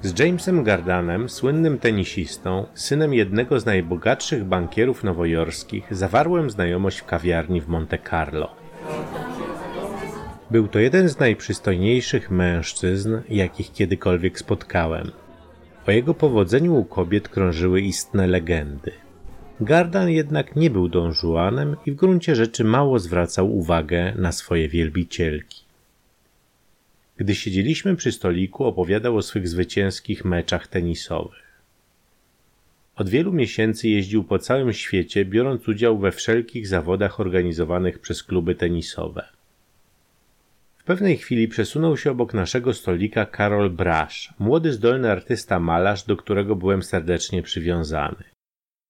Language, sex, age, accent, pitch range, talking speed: Polish, male, 30-49, native, 90-120 Hz, 115 wpm